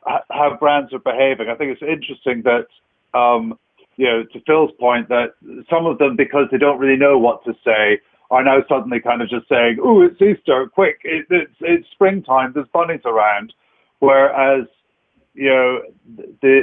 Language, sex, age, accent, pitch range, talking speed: English, male, 50-69, British, 120-145 Hz, 175 wpm